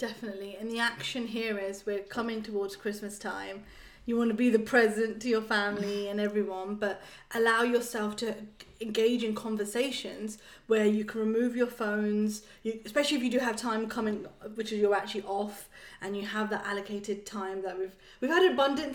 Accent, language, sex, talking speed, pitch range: British, English, female, 185 wpm, 205-240 Hz